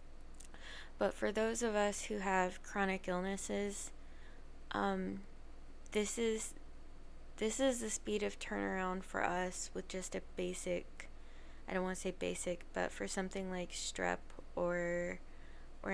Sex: female